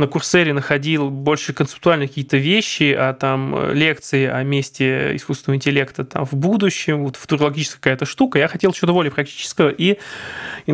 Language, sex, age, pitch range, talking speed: Russian, male, 20-39, 140-165 Hz, 155 wpm